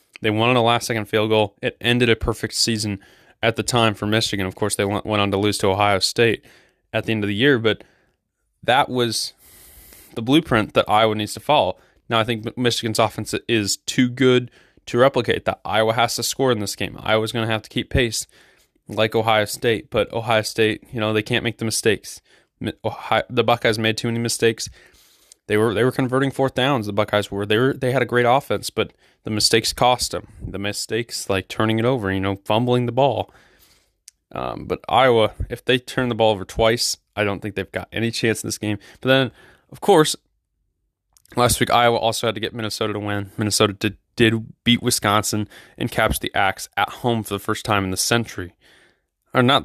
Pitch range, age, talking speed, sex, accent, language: 105-120 Hz, 20-39, 210 wpm, male, American, English